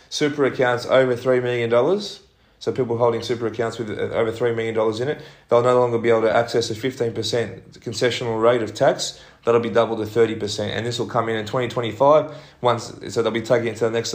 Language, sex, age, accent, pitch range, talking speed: English, male, 20-39, Australian, 110-125 Hz, 210 wpm